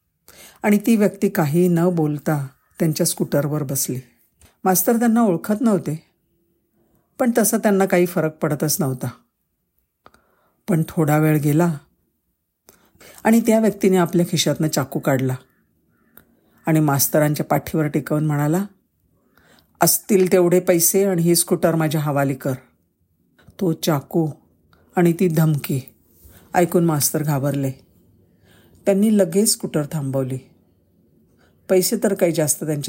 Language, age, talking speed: Marathi, 50-69, 80 wpm